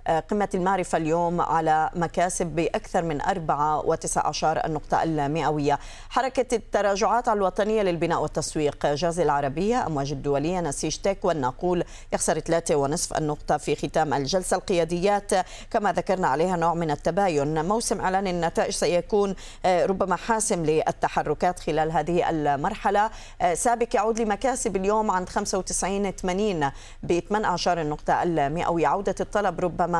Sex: female